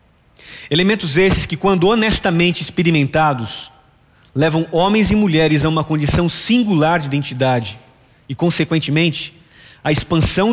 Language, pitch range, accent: Portuguese, 130-170 Hz, Brazilian